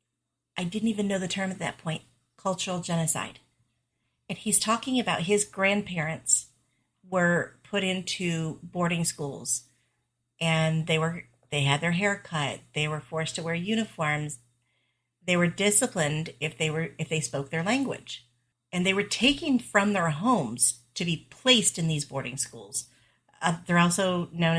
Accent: American